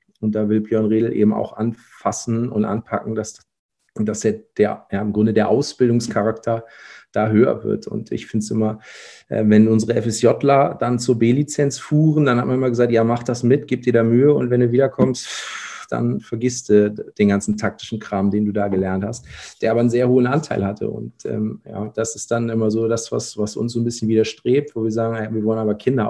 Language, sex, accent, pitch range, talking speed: German, male, German, 105-120 Hz, 215 wpm